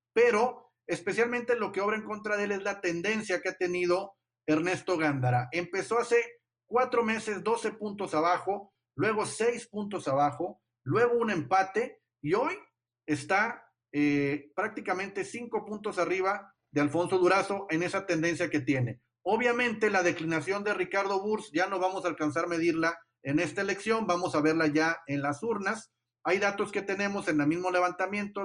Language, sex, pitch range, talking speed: Spanish, male, 155-210 Hz, 165 wpm